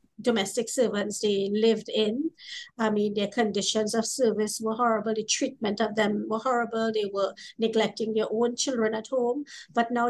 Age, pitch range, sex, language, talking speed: 50-69, 215-265 Hz, female, English, 170 wpm